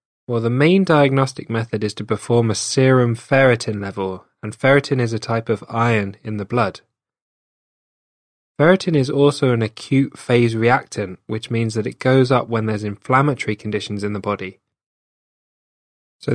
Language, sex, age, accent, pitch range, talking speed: English, male, 10-29, British, 105-125 Hz, 160 wpm